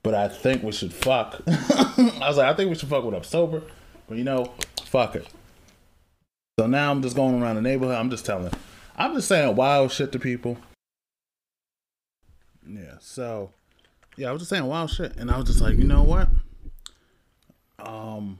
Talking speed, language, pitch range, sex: 190 wpm, English, 105-140 Hz, male